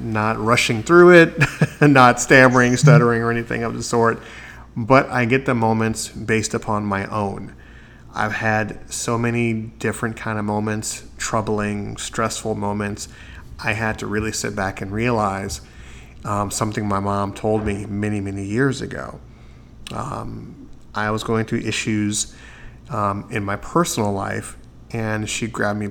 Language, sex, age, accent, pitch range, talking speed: English, male, 30-49, American, 105-120 Hz, 150 wpm